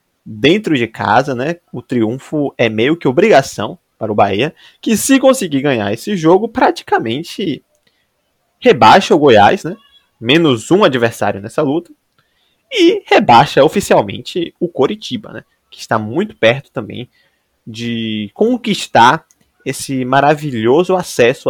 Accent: Brazilian